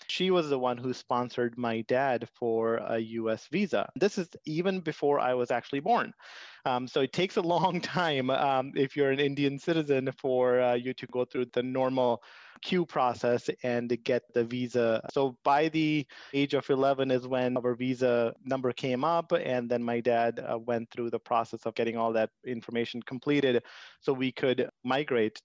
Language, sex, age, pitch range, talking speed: English, male, 30-49, 120-140 Hz, 185 wpm